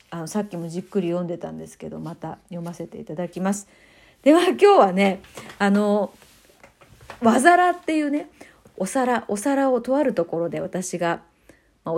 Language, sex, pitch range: Japanese, female, 180-245 Hz